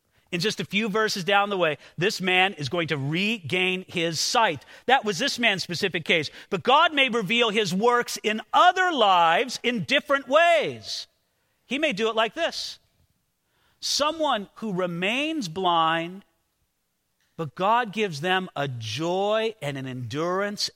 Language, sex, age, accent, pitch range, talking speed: English, male, 40-59, American, 155-215 Hz, 155 wpm